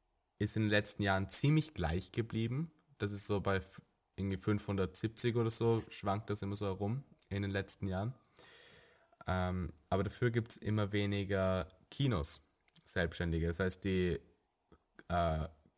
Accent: German